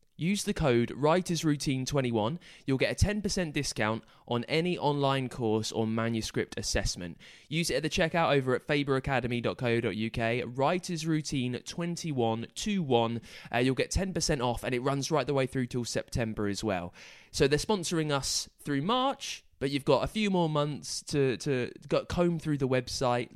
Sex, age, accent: male, 20-39, British